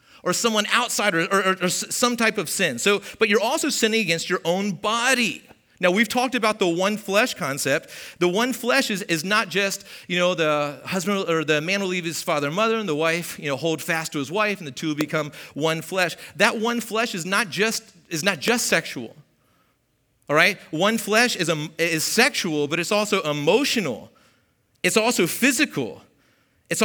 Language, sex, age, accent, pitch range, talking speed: English, male, 40-59, American, 170-240 Hz, 200 wpm